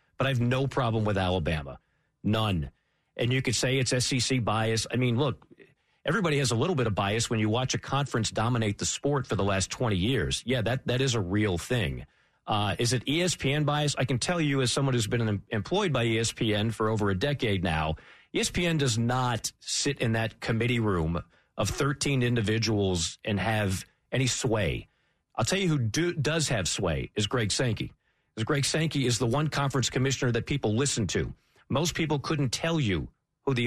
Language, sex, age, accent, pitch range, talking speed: English, male, 40-59, American, 105-135 Hz, 195 wpm